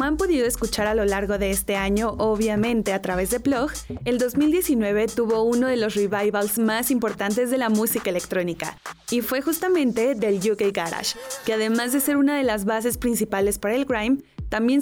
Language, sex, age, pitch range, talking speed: Spanish, female, 20-39, 205-250 Hz, 185 wpm